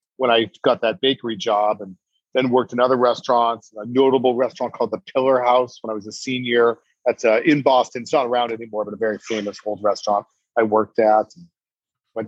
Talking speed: 200 wpm